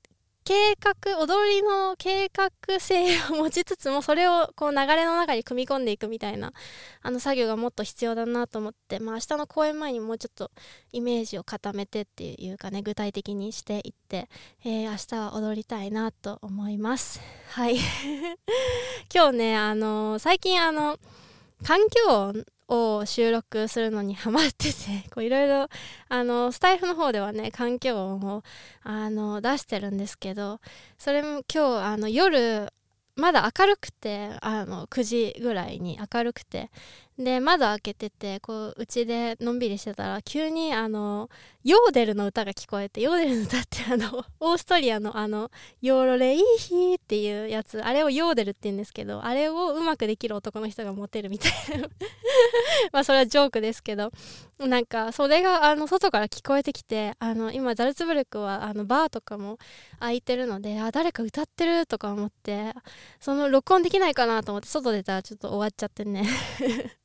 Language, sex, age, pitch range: Japanese, female, 20-39, 215-300 Hz